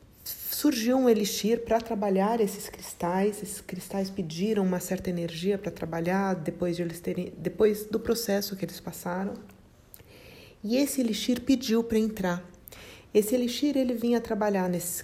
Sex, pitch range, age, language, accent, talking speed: female, 195-245 Hz, 40-59, Portuguese, Brazilian, 130 wpm